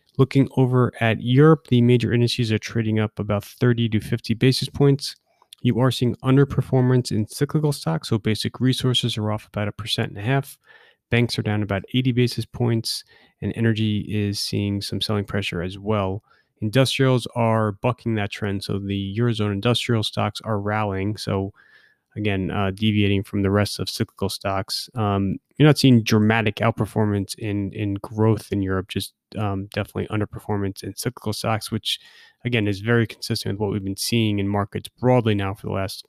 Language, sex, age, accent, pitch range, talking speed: English, male, 30-49, American, 100-120 Hz, 180 wpm